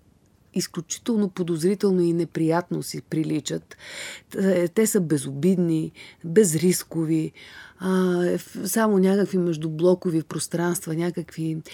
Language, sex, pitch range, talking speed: Bulgarian, female, 175-225 Hz, 75 wpm